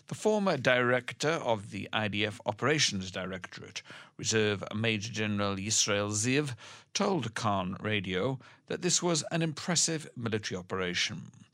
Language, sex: English, male